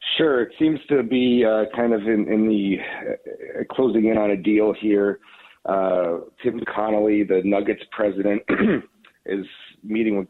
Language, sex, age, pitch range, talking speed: English, male, 40-59, 100-125 Hz, 155 wpm